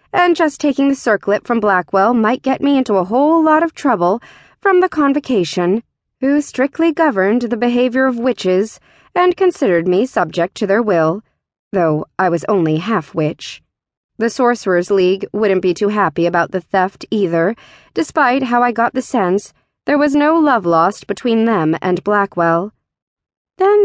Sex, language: female, English